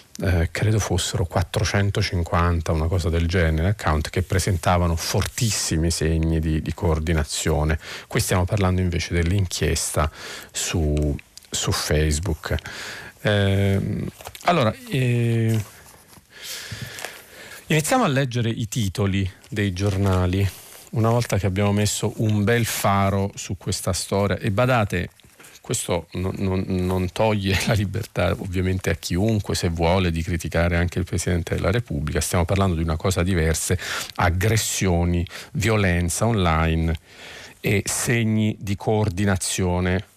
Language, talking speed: Italian, 115 wpm